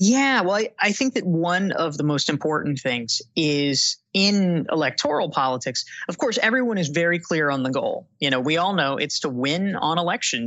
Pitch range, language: 135-190 Hz, English